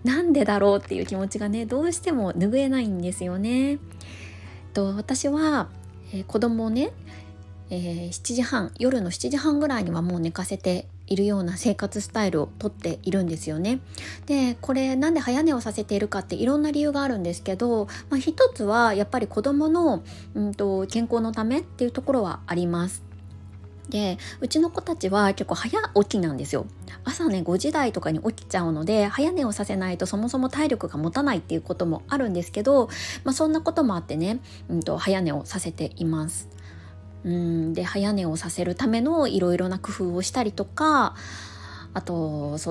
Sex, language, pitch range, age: female, Japanese, 160-245 Hz, 20-39